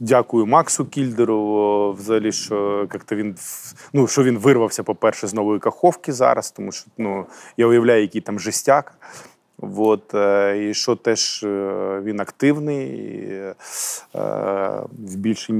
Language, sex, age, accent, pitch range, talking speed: Ukrainian, male, 20-39, native, 105-130 Hz, 120 wpm